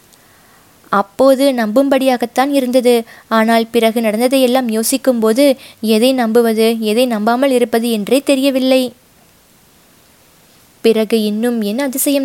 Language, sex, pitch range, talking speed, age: Tamil, female, 205-250 Hz, 90 wpm, 20-39